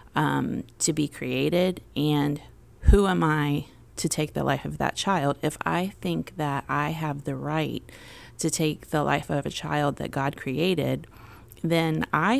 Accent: American